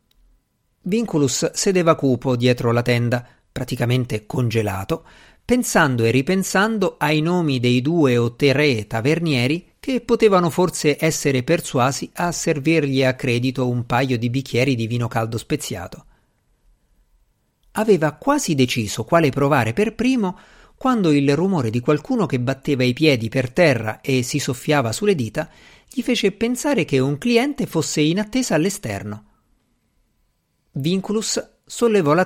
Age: 50-69